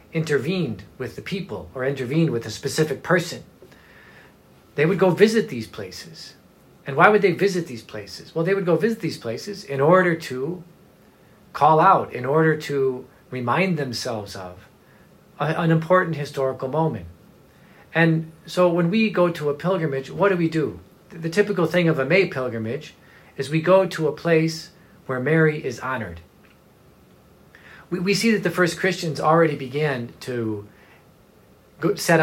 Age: 40-59